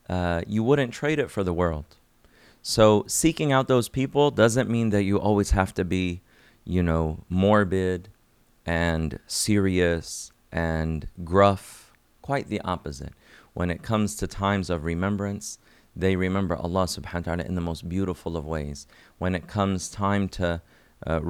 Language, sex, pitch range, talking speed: English, male, 85-110 Hz, 155 wpm